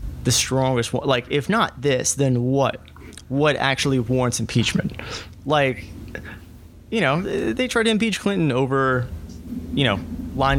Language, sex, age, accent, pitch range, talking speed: English, male, 20-39, American, 90-135 Hz, 140 wpm